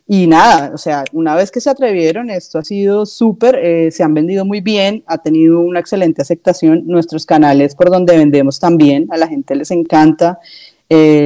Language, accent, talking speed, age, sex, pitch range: Spanish, Colombian, 190 wpm, 30-49, female, 150-175 Hz